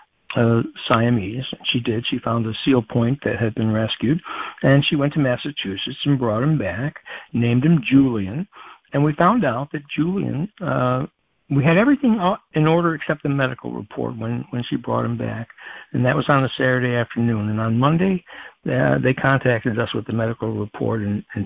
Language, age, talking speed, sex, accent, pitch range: English, 60-79, 185 wpm, male, American, 115-150 Hz